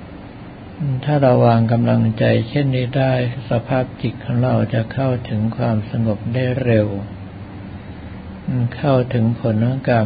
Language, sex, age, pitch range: Thai, male, 60-79, 110-130 Hz